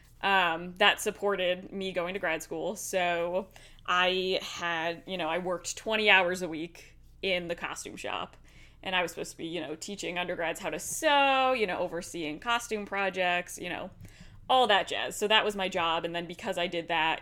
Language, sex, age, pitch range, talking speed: English, female, 20-39, 175-215 Hz, 200 wpm